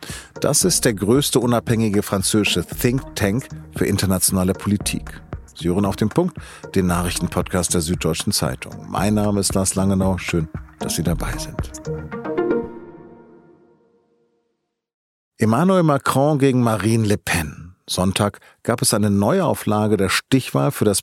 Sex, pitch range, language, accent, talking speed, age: male, 90-125 Hz, German, German, 130 wpm, 50-69